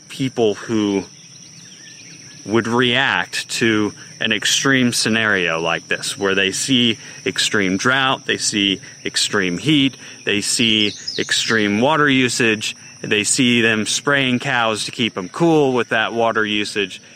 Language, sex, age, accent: English, male, 30-49, American